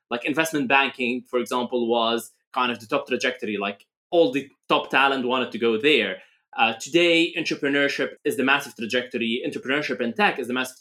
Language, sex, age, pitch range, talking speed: English, male, 20-39, 120-155 Hz, 185 wpm